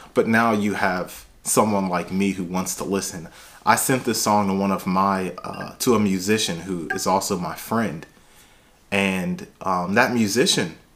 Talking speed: 175 wpm